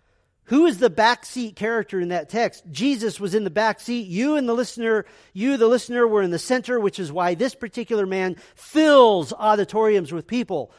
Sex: male